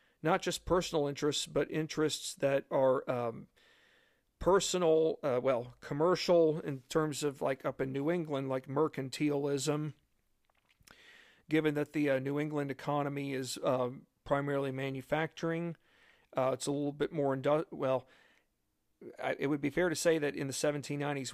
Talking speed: 145 wpm